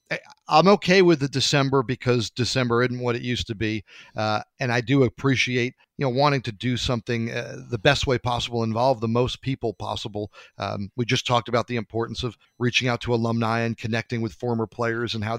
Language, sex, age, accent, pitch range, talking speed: English, male, 40-59, American, 115-145 Hz, 205 wpm